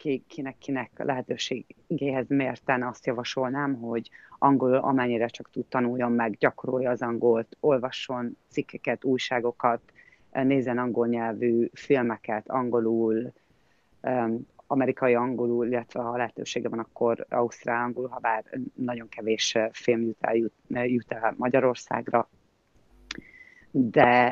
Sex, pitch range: female, 120-135 Hz